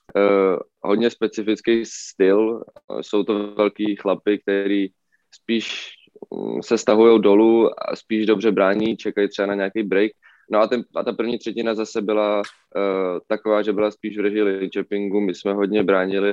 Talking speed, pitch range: 160 wpm, 95-105 Hz